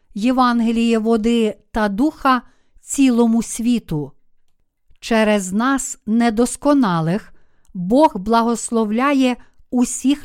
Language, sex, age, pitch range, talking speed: Ukrainian, female, 50-69, 215-255 Hz, 70 wpm